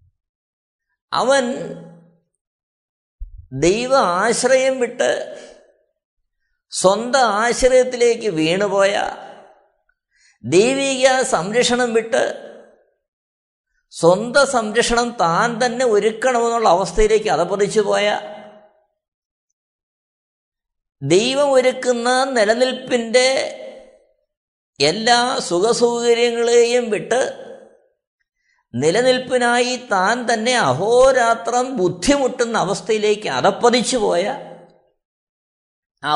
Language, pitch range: Malayalam, 180-250 Hz